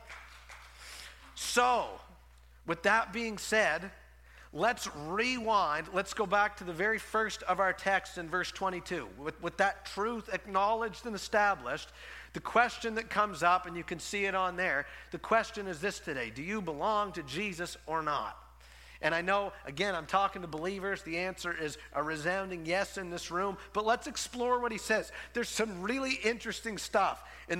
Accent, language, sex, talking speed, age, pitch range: American, English, male, 175 wpm, 50-69, 135-210 Hz